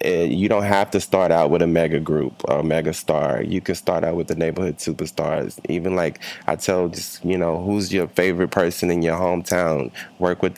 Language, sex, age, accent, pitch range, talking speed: English, male, 20-39, American, 80-95 Hz, 210 wpm